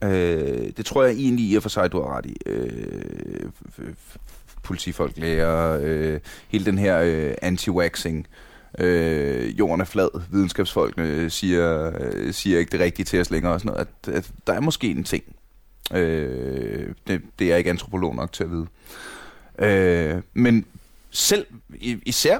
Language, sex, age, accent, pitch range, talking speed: Danish, male, 30-49, native, 90-125 Hz, 130 wpm